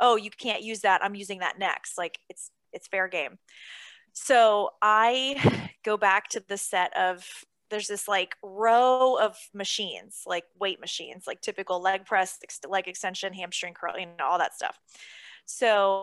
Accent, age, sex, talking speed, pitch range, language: American, 20-39, female, 170 wpm, 190-225 Hz, English